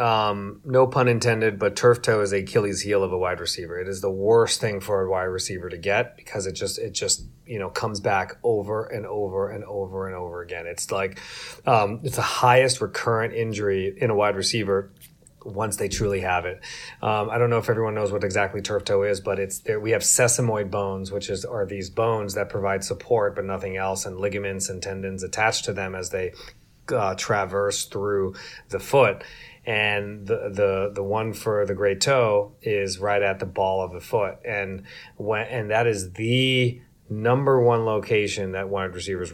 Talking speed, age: 200 wpm, 30-49